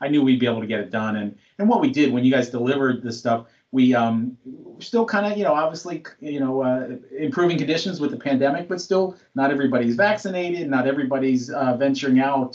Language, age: English, 30-49